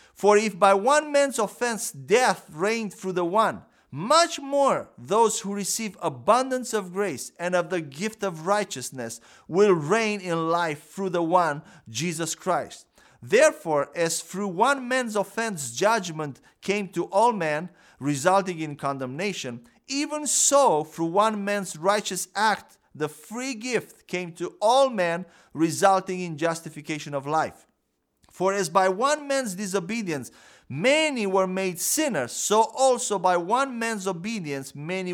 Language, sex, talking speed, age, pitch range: English, male, 145 wpm, 50-69, 165-225 Hz